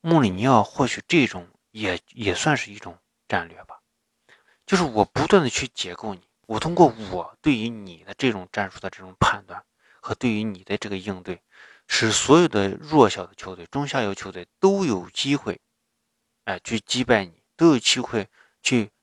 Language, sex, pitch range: Chinese, male, 100-125 Hz